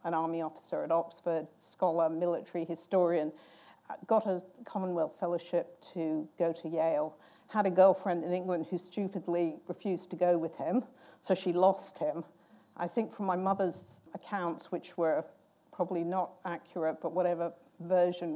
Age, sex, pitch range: 50-69, female, 165-185 Hz